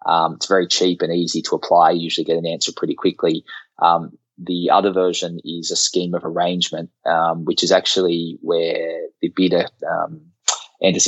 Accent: Australian